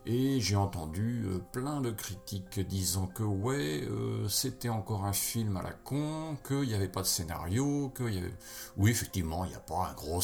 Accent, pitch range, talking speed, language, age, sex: French, 95-115 Hz, 215 wpm, French, 40-59, male